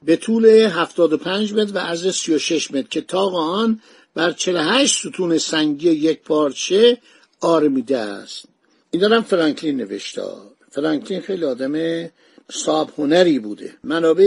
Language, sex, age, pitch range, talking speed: Persian, male, 60-79, 150-195 Hz, 125 wpm